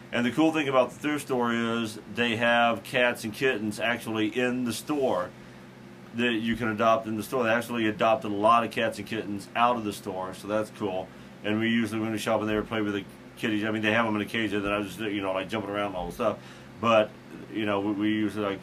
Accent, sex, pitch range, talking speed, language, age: American, male, 100-115 Hz, 265 wpm, English, 40-59